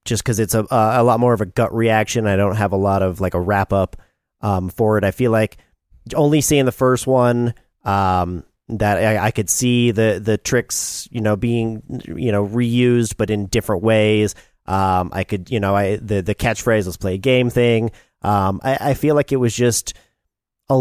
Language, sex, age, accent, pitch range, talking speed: English, male, 30-49, American, 100-120 Hz, 215 wpm